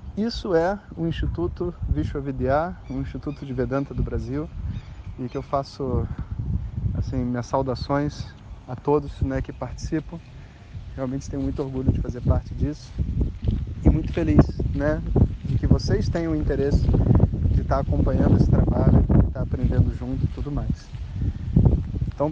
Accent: Brazilian